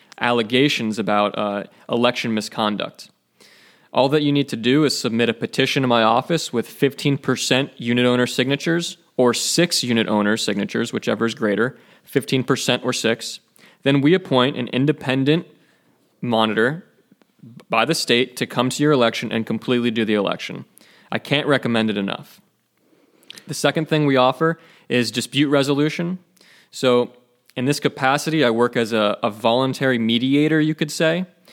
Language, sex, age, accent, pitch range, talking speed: English, male, 20-39, American, 115-145 Hz, 150 wpm